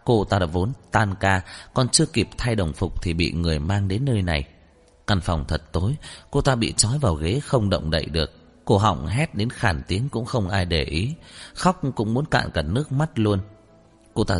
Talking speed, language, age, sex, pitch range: 225 wpm, Vietnamese, 30-49, male, 85-120 Hz